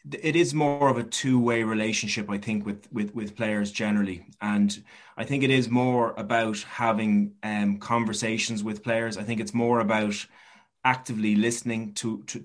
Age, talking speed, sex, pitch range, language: 30-49, 170 wpm, male, 110-130 Hz, English